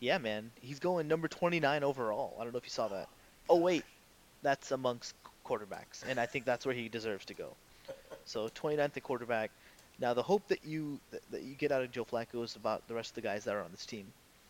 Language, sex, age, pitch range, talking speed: English, male, 20-39, 115-140 Hz, 235 wpm